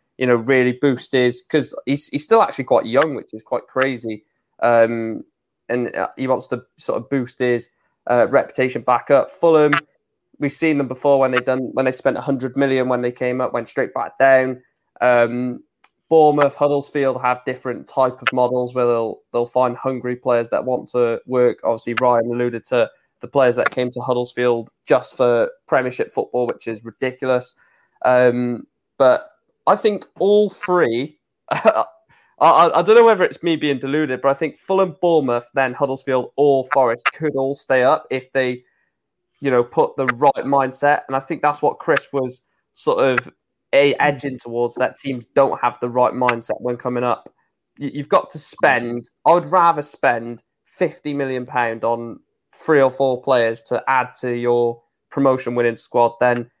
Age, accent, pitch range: 20-39, British, 120-140 Hz